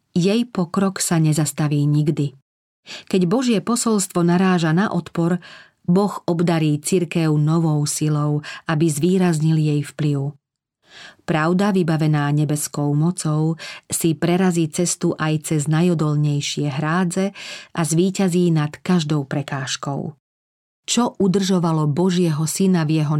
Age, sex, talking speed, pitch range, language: 40-59, female, 110 wpm, 155-185 Hz, Slovak